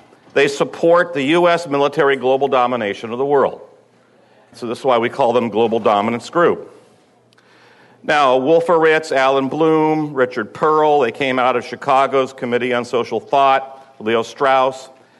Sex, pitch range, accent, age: male, 125-160 Hz, American, 50-69